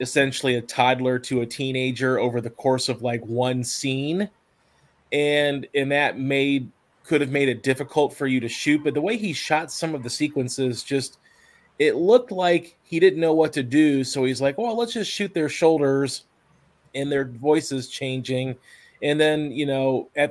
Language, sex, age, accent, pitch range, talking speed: English, male, 30-49, American, 130-150 Hz, 185 wpm